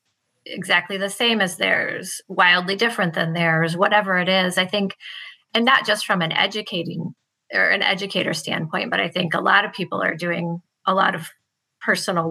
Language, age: English, 30-49